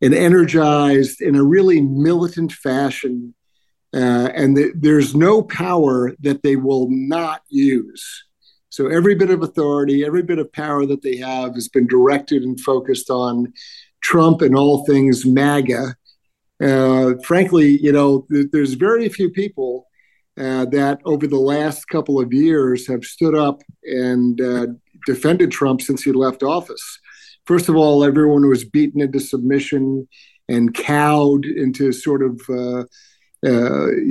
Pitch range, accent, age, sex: 130-155 Hz, American, 50-69, male